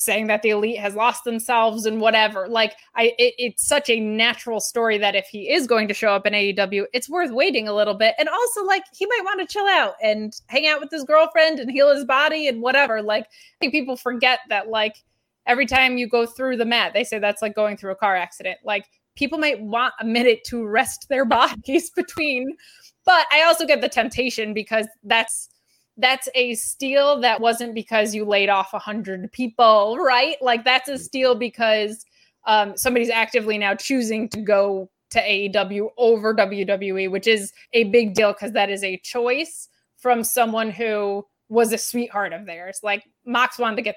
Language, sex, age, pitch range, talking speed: English, female, 20-39, 210-260 Hz, 200 wpm